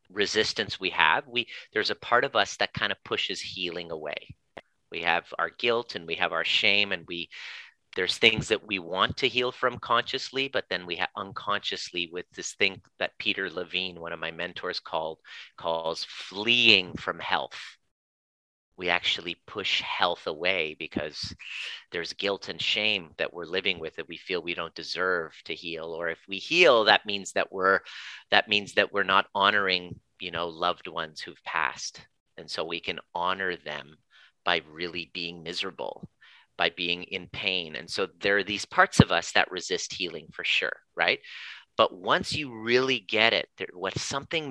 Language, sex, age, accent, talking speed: English, male, 30-49, American, 180 wpm